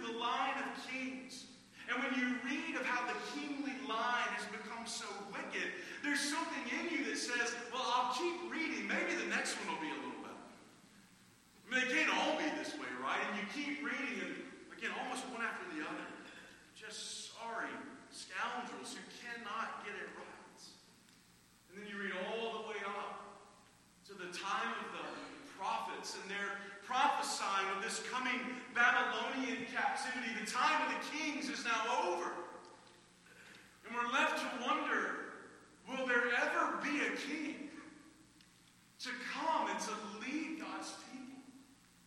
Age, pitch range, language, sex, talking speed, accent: 40-59, 215-285 Hz, English, male, 160 wpm, American